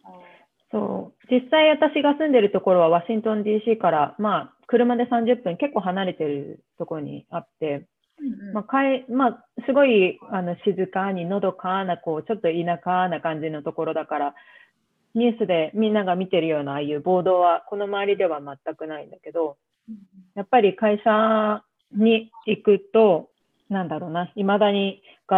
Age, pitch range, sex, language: 40-59, 165-215 Hz, female, Japanese